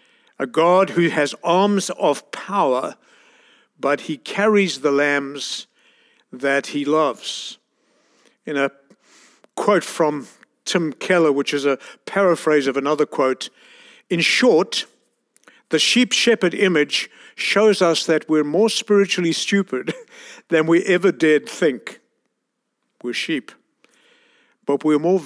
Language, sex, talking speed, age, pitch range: English, male, 120 wpm, 60-79, 150-195 Hz